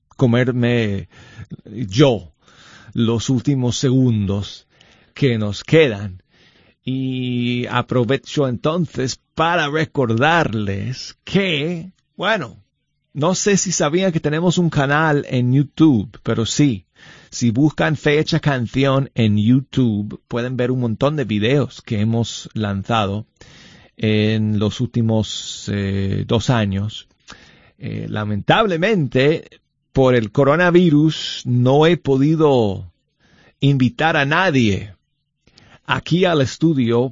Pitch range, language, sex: 110-145 Hz, Spanish, male